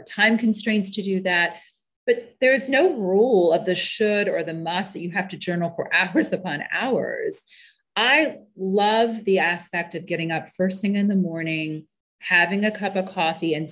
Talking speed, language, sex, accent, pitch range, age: 190 wpm, English, female, American, 175-225 Hz, 30-49